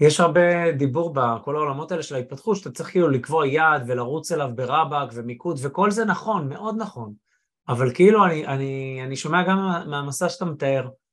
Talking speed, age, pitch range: 180 wpm, 20-39, 135-185 Hz